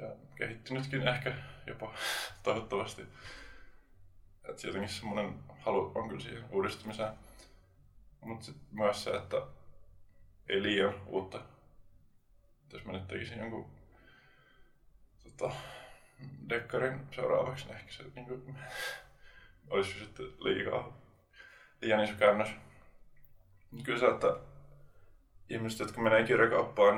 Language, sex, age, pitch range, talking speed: Finnish, male, 20-39, 95-125 Hz, 100 wpm